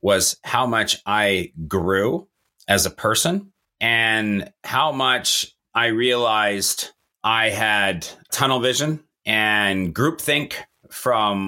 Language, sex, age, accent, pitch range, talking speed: English, male, 30-49, American, 110-140 Hz, 105 wpm